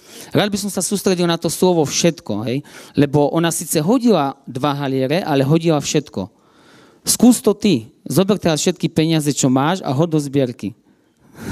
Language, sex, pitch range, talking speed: Slovak, male, 135-180 Hz, 165 wpm